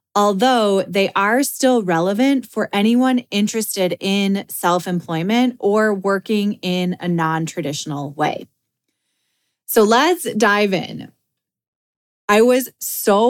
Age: 20-39